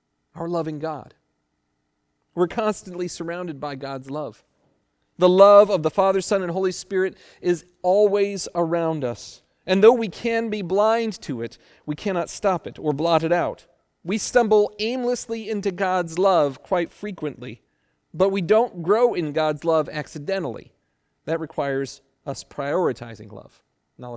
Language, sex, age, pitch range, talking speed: English, male, 40-59, 155-210 Hz, 150 wpm